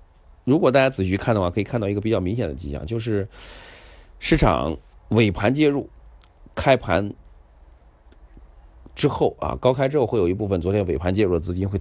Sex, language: male, Chinese